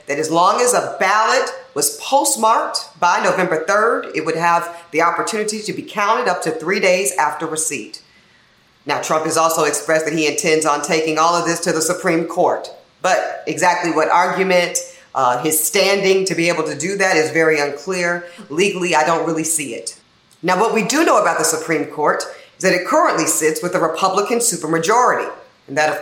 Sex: female